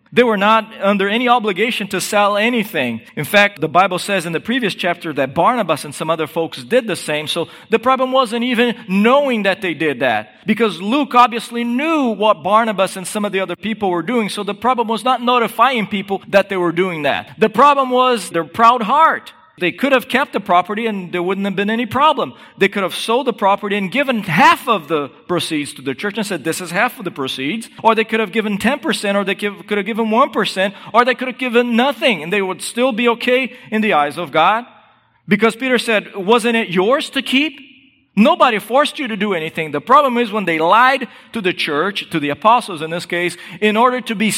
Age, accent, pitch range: 40-59, American, 175-235 Hz